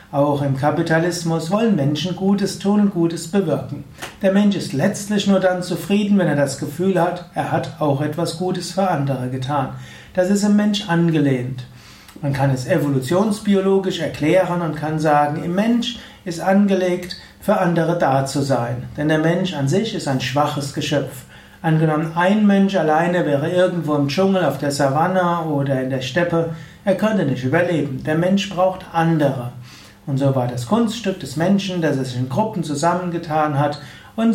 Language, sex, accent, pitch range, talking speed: German, male, German, 145-185 Hz, 170 wpm